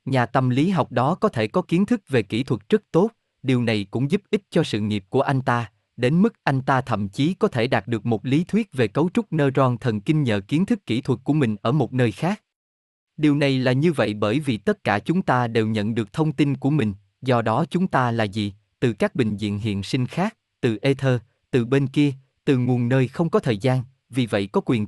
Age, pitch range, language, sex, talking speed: 20-39, 110-155 Hz, Vietnamese, male, 250 wpm